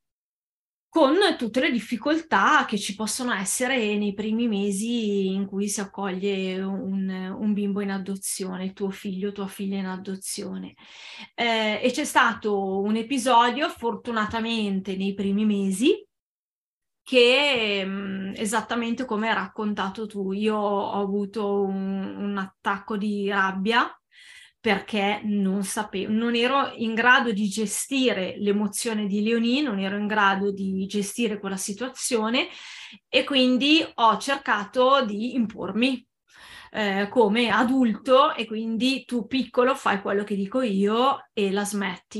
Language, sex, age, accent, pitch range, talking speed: Italian, female, 20-39, native, 200-240 Hz, 130 wpm